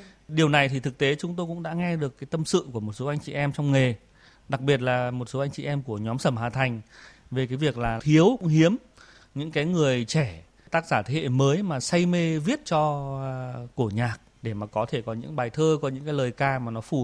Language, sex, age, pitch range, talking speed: Vietnamese, male, 20-39, 125-150 Hz, 255 wpm